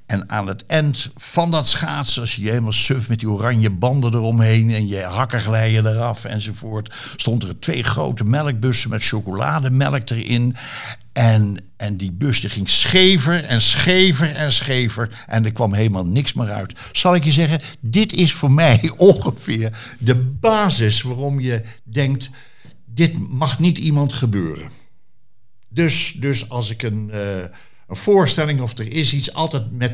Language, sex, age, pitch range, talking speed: Dutch, male, 60-79, 110-145 Hz, 165 wpm